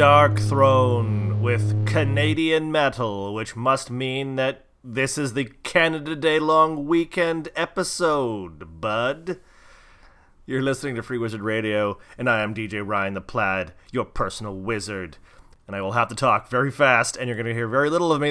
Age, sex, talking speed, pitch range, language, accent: 30-49, male, 165 wpm, 110-140 Hz, English, American